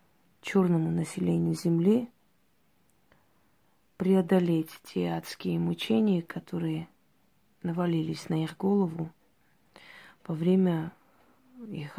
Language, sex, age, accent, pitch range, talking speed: Russian, female, 30-49, native, 160-190 Hz, 75 wpm